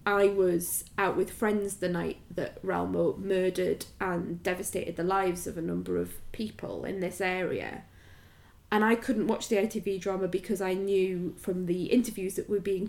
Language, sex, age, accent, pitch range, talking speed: English, female, 20-39, British, 190-240 Hz, 175 wpm